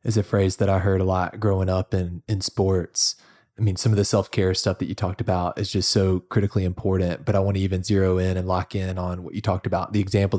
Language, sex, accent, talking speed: English, male, American, 270 wpm